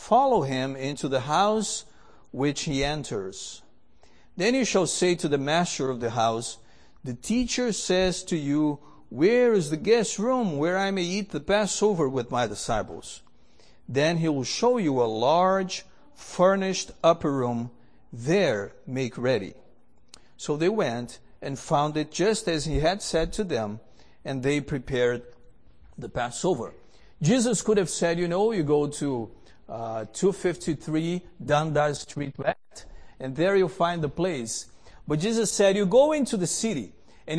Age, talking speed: 50-69, 155 wpm